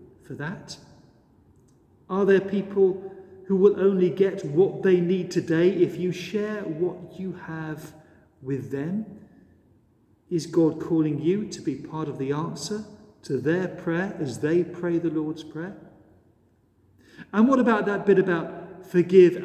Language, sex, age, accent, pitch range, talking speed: English, male, 40-59, British, 150-185 Hz, 145 wpm